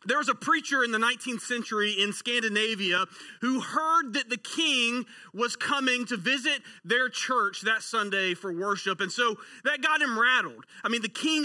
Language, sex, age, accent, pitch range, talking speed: English, male, 30-49, American, 185-245 Hz, 185 wpm